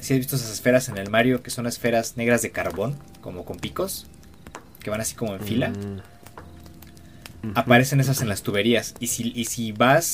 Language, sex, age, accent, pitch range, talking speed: Spanish, male, 20-39, Mexican, 100-125 Hz, 200 wpm